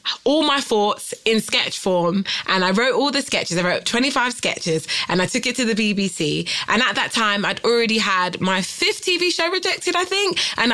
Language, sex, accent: English, female, British